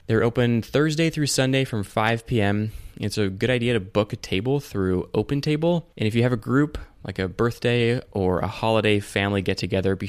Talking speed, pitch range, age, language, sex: 195 wpm, 95-120 Hz, 20-39, English, male